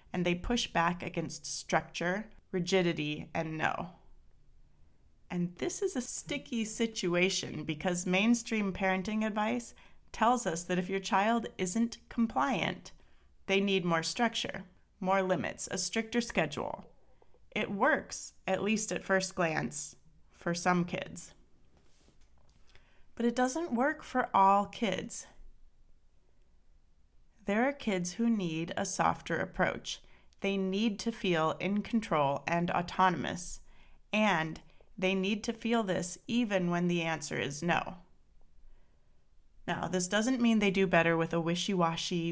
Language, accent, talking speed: English, American, 130 wpm